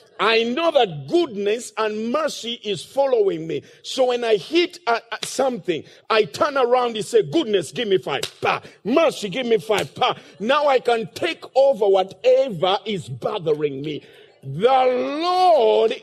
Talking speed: 140 wpm